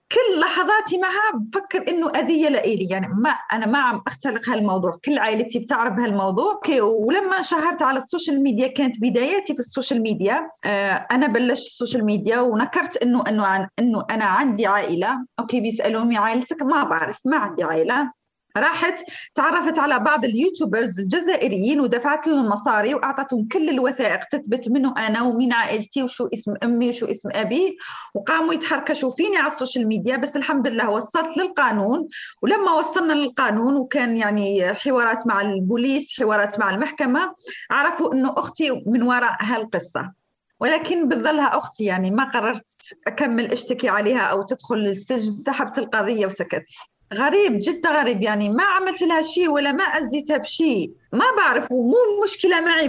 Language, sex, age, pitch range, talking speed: Arabic, female, 20-39, 225-310 Hz, 150 wpm